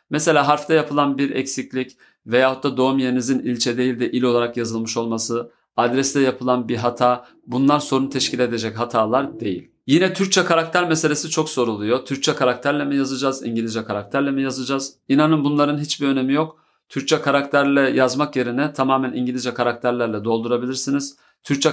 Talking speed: 150 wpm